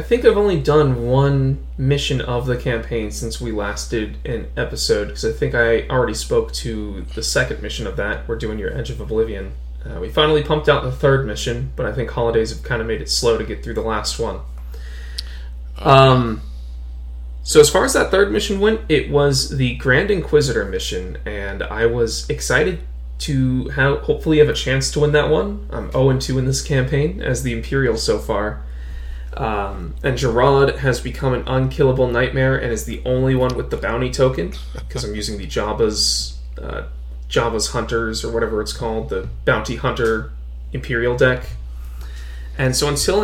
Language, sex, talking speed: English, male, 185 wpm